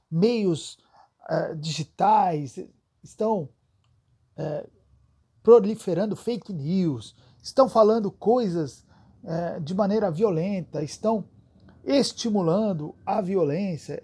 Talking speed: 70 wpm